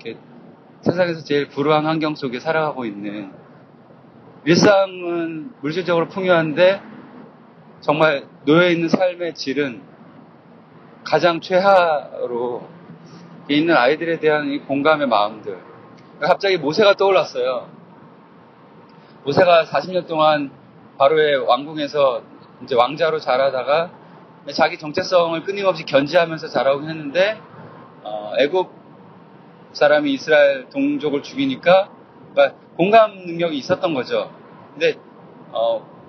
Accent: native